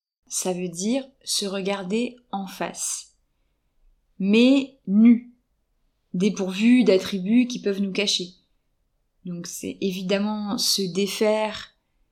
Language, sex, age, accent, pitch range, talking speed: French, female, 20-39, French, 185-220 Hz, 100 wpm